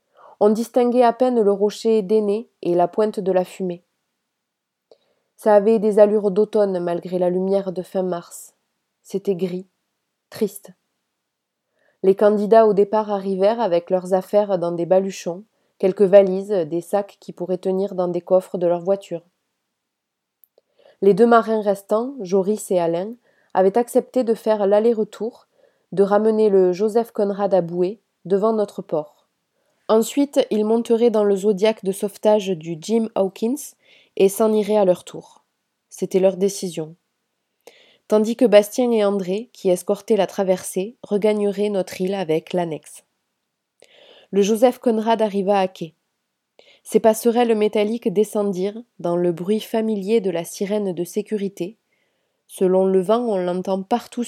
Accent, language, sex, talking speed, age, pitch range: French, French, female, 145 wpm, 20-39, 185-220 Hz